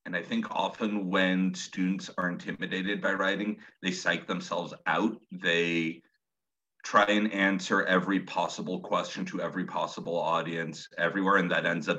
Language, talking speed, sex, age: English, 150 wpm, male, 40-59